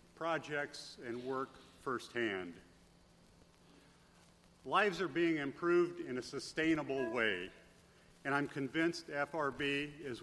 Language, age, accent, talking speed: English, 50-69, American, 100 wpm